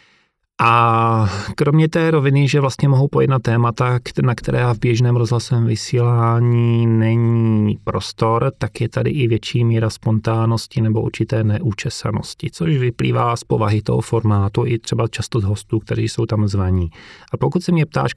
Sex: male